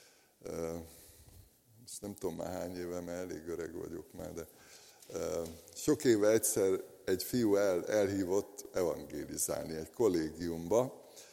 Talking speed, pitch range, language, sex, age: 115 wpm, 90-125 Hz, Hungarian, male, 60-79